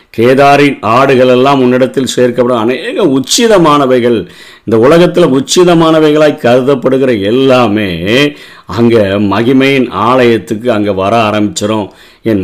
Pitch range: 120-150 Hz